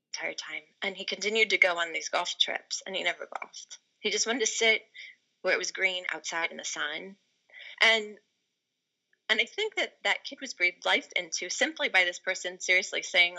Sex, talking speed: female, 200 wpm